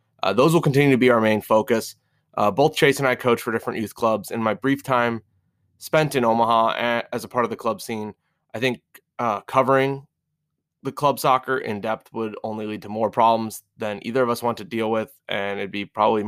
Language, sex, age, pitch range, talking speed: English, male, 20-39, 110-130 Hz, 220 wpm